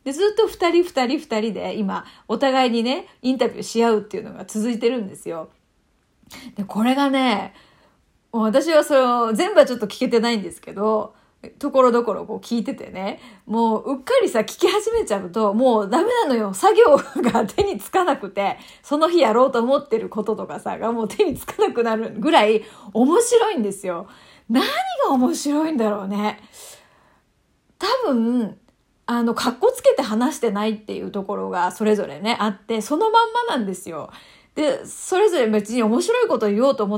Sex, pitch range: female, 215-315 Hz